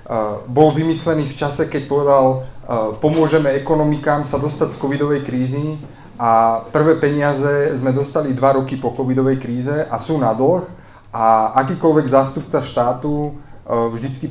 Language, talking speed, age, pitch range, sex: Slovak, 145 wpm, 30-49, 120-150 Hz, male